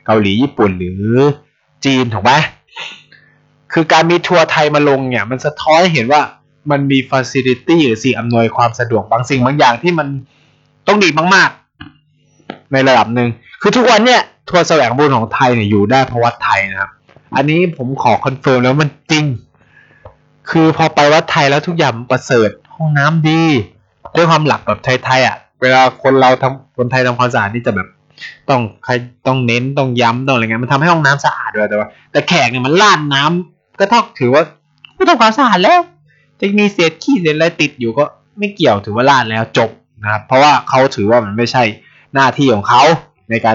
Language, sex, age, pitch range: Thai, male, 20-39, 120-155 Hz